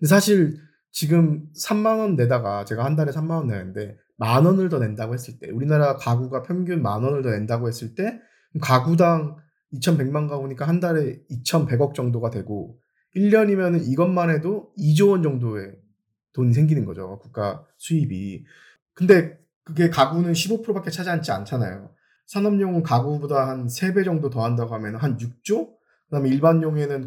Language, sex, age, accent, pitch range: Korean, male, 20-39, native, 125-180 Hz